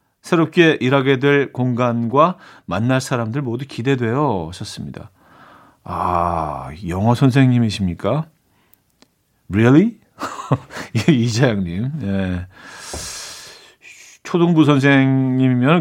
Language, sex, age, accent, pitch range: Korean, male, 40-59, native, 100-150 Hz